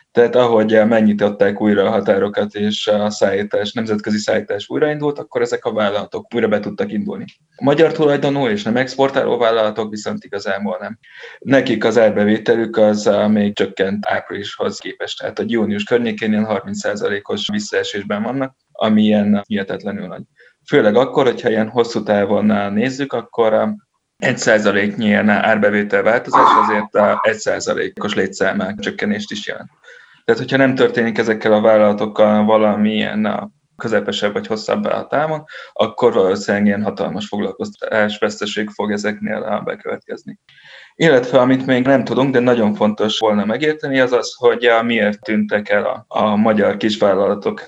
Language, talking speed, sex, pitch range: Hungarian, 140 wpm, male, 105-130 Hz